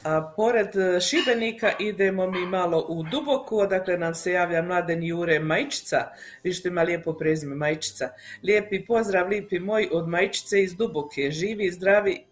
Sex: female